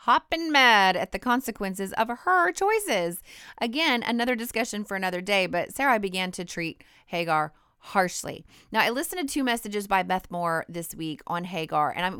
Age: 30-49